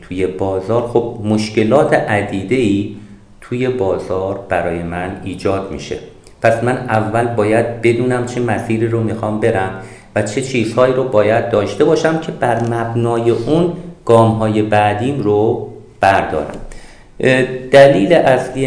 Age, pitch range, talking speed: 50-69, 105-125 Hz, 120 wpm